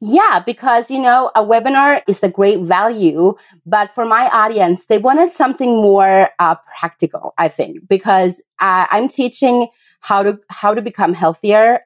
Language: English